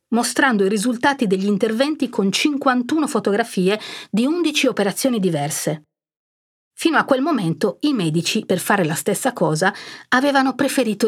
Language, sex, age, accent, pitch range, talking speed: Italian, female, 50-69, native, 185-270 Hz, 135 wpm